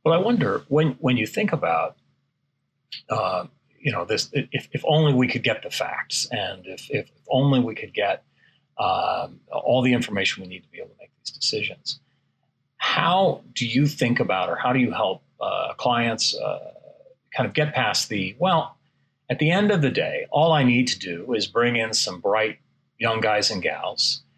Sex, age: male, 40-59